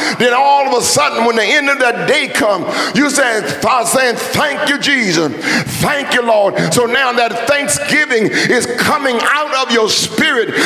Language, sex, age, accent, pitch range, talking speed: English, male, 50-69, American, 155-245 Hz, 170 wpm